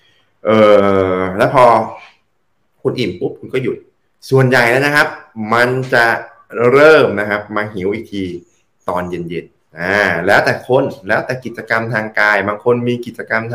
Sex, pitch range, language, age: male, 105-140 Hz, Thai, 20-39